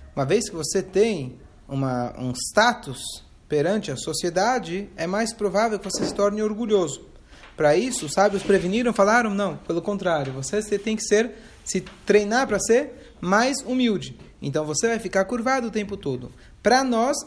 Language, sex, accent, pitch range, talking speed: Portuguese, male, Brazilian, 155-225 Hz, 165 wpm